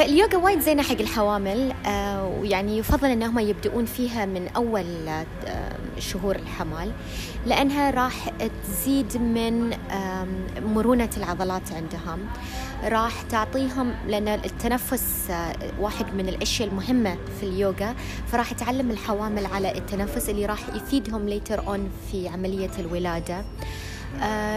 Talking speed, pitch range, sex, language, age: 120 wpm, 165-235 Hz, female, Arabic, 20-39